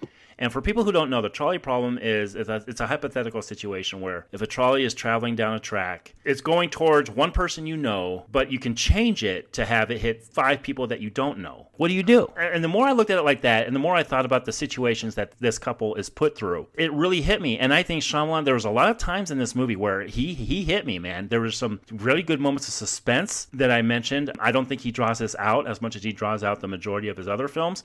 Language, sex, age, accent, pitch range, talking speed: English, male, 30-49, American, 110-150 Hz, 270 wpm